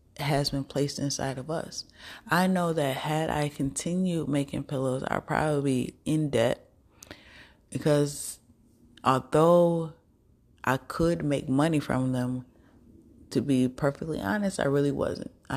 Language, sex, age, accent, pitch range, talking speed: English, female, 20-39, American, 130-145 Hz, 135 wpm